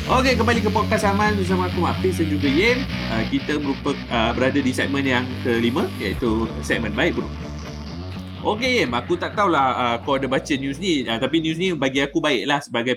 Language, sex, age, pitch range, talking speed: Malay, male, 20-39, 115-140 Hz, 205 wpm